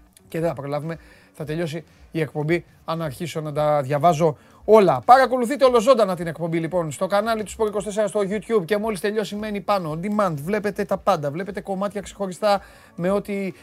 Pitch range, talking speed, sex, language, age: 150-195 Hz, 180 wpm, male, Greek, 30-49